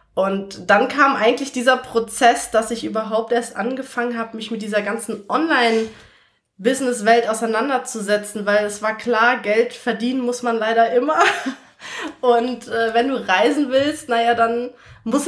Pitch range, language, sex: 205-240 Hz, German, female